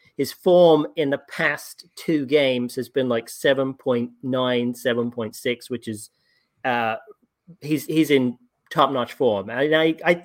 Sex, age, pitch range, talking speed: male, 30-49, 120-150 Hz, 135 wpm